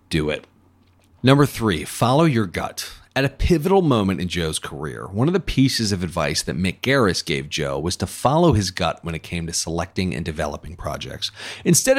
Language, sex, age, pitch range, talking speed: English, male, 40-59, 80-115 Hz, 195 wpm